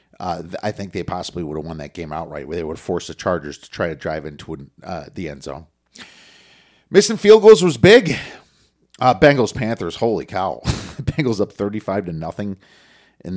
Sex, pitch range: male, 85-115 Hz